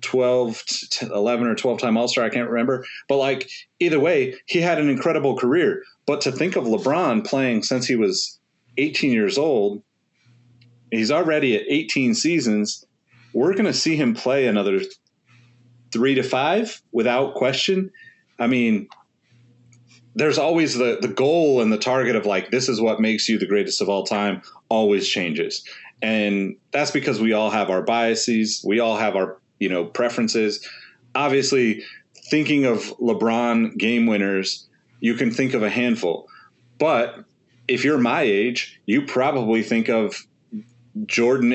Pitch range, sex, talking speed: 110-135 Hz, male, 155 wpm